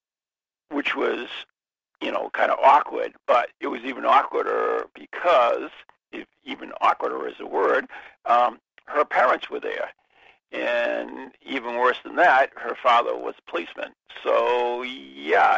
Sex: male